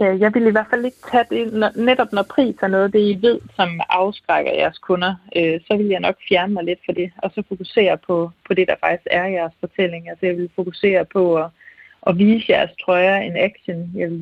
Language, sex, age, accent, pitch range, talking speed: Danish, female, 30-49, native, 170-210 Hz, 235 wpm